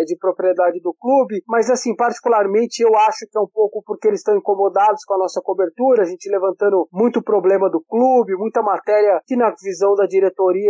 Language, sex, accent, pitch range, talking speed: Portuguese, male, Brazilian, 200-250 Hz, 195 wpm